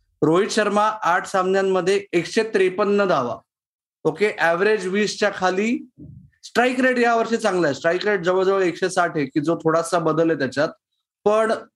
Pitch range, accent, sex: 165-220 Hz, native, male